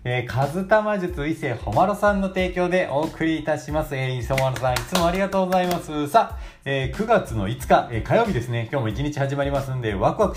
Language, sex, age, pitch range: Japanese, male, 40-59, 105-150 Hz